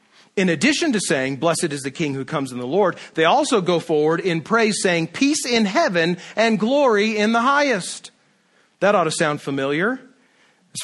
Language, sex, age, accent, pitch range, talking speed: English, male, 40-59, American, 165-210 Hz, 190 wpm